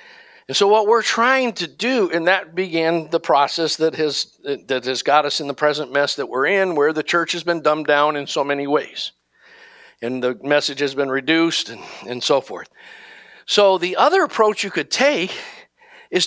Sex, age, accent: male, 50-69, American